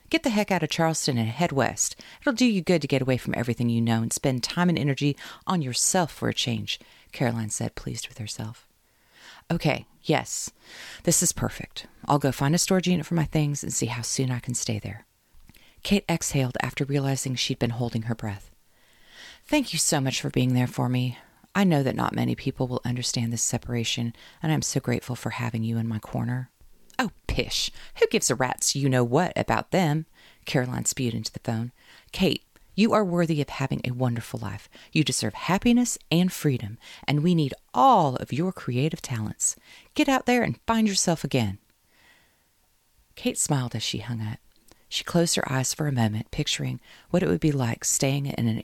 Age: 40-59